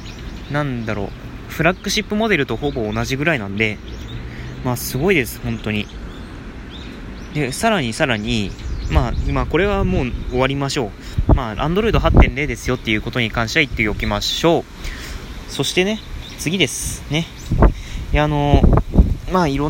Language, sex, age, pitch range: Japanese, male, 20-39, 100-150 Hz